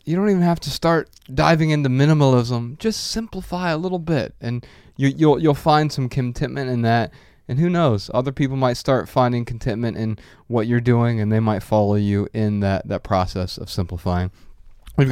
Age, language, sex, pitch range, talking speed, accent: 20-39, English, male, 110-145 Hz, 185 wpm, American